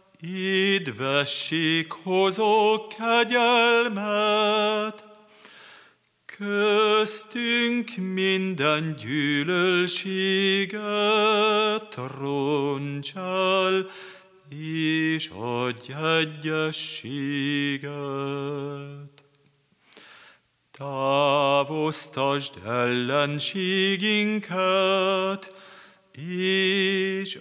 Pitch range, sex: 145-210 Hz, male